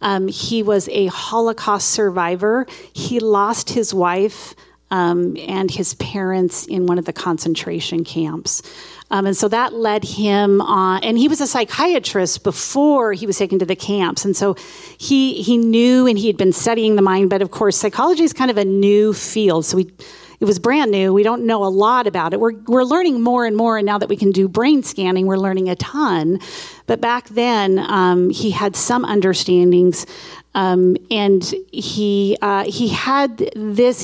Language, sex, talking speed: English, female, 190 wpm